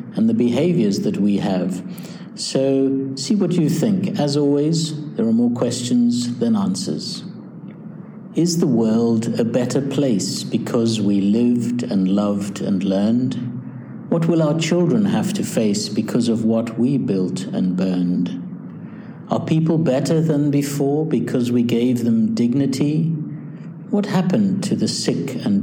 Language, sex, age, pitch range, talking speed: English, male, 60-79, 115-165 Hz, 145 wpm